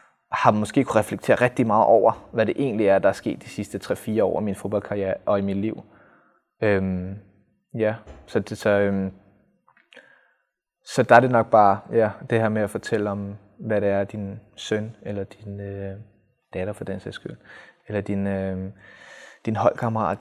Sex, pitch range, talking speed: male, 95-110 Hz, 180 wpm